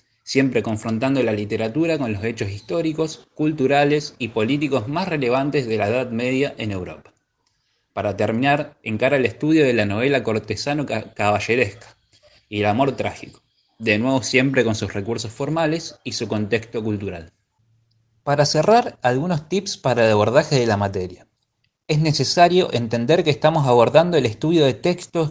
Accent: Argentinian